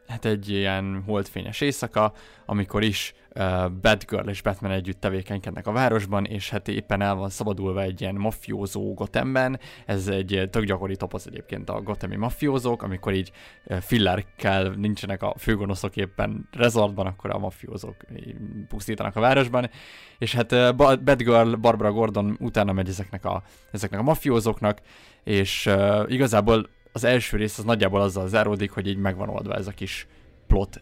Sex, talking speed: male, 150 wpm